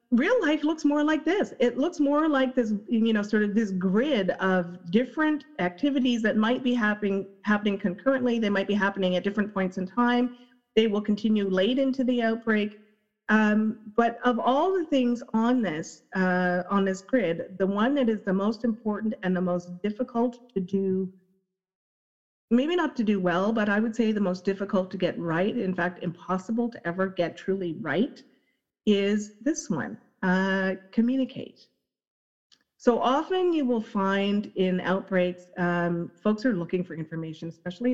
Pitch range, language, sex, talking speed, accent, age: 185-245 Hz, English, female, 170 wpm, American, 40-59